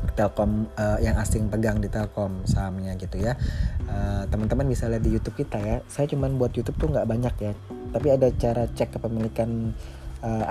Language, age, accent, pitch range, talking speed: Indonesian, 20-39, native, 100-120 Hz, 185 wpm